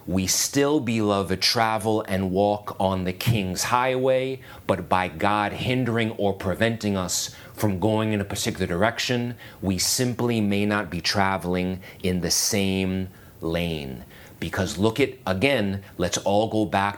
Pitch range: 95-115 Hz